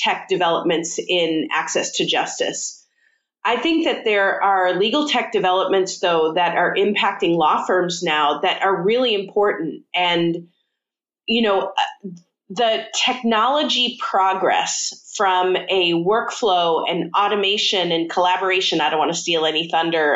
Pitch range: 180-235 Hz